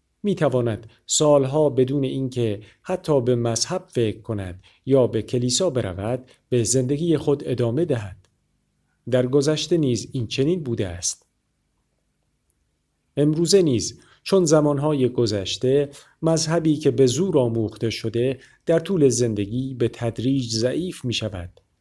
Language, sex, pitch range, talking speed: Persian, male, 115-150 Hz, 120 wpm